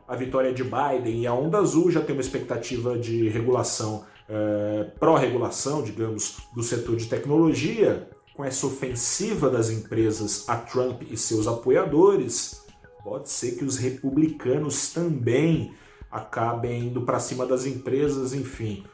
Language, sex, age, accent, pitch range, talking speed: Portuguese, male, 30-49, Brazilian, 110-140 Hz, 135 wpm